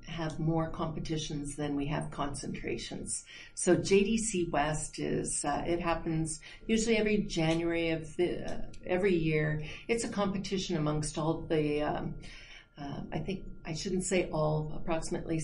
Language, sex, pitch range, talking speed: English, female, 150-180 Hz, 140 wpm